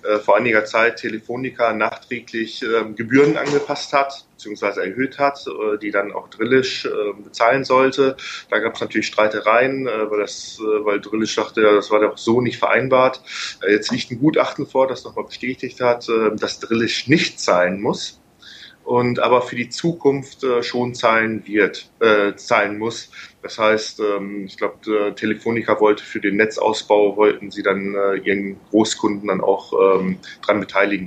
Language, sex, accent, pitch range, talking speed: German, male, German, 100-125 Hz, 170 wpm